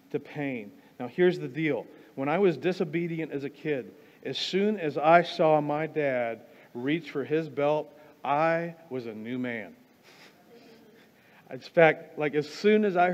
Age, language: 40-59, English